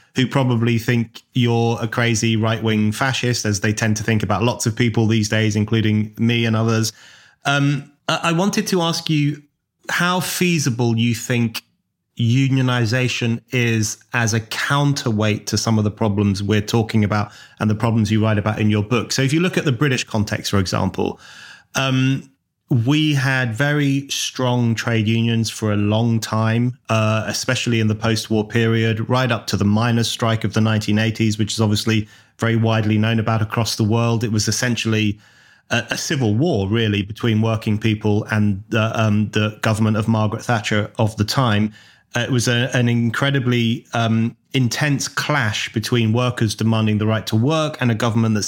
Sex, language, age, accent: male, English, 30-49, British